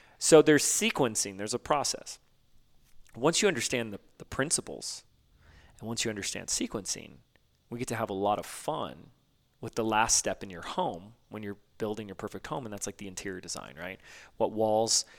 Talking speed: 185 wpm